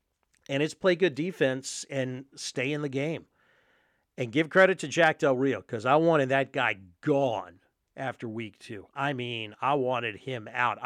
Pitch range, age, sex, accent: 120-150 Hz, 50-69, male, American